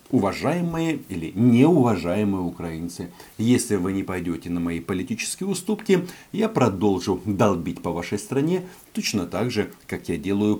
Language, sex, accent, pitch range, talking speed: Russian, male, native, 95-140 Hz, 135 wpm